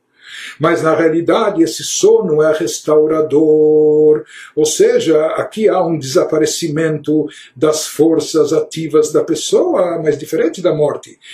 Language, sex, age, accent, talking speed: Portuguese, male, 60-79, Brazilian, 115 wpm